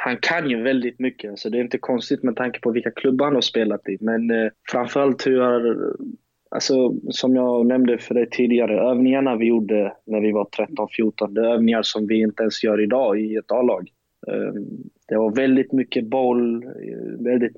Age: 20-39